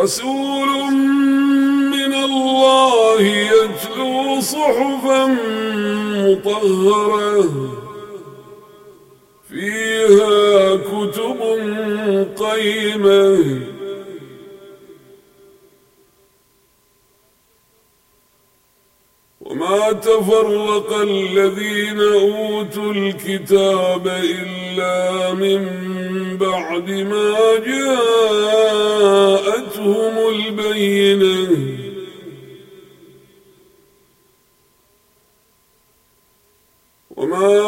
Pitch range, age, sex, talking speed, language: 195-220 Hz, 50-69, male, 35 wpm, Arabic